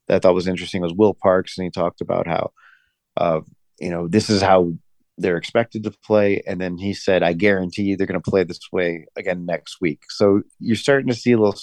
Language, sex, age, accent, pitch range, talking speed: English, male, 30-49, American, 90-105 Hz, 235 wpm